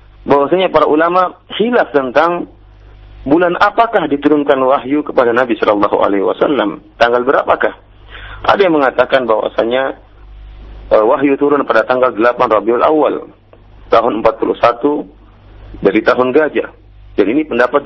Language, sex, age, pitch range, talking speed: Malay, male, 40-59, 110-165 Hz, 120 wpm